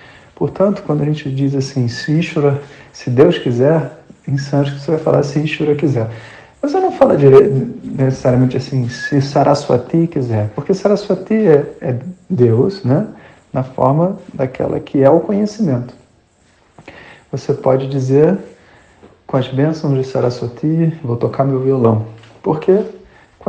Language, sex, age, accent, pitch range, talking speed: Portuguese, male, 40-59, Brazilian, 130-160 Hz, 140 wpm